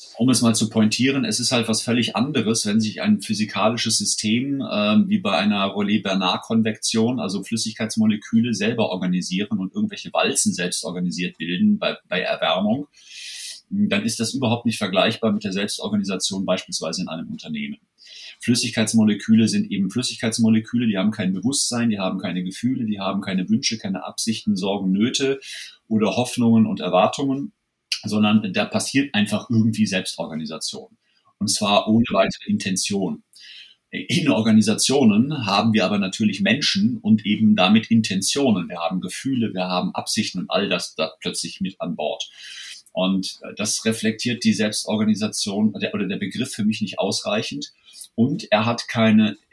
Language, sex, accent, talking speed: German, male, German, 150 wpm